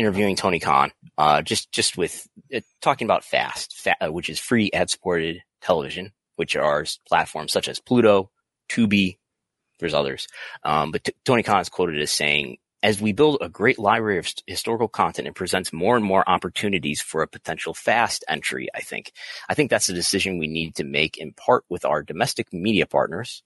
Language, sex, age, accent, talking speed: English, male, 30-49, American, 190 wpm